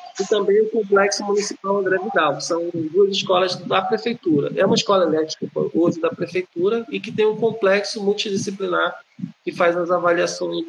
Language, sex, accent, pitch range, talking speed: Portuguese, male, Brazilian, 180-220 Hz, 165 wpm